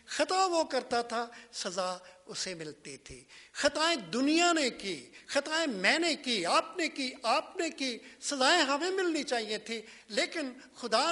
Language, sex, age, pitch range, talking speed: English, male, 50-69, 155-255 Hz, 140 wpm